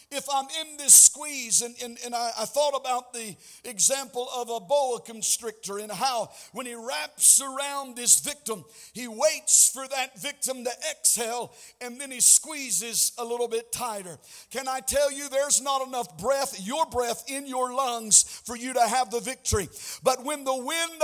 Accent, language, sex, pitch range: American, English, male, 235-280 Hz